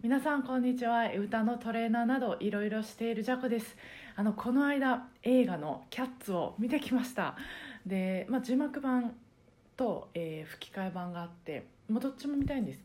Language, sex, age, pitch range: Japanese, female, 20-39, 165-235 Hz